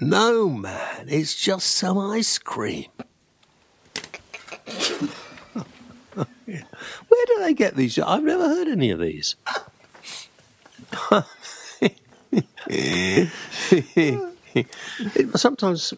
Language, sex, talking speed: English, male, 70 wpm